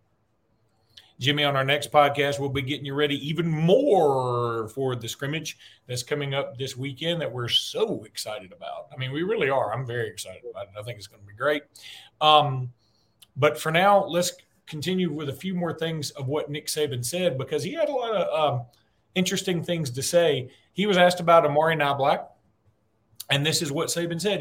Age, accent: 40-59, American